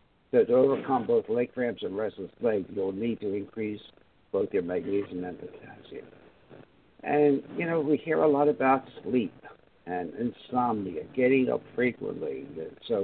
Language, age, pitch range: English, 60-79, 105-140 Hz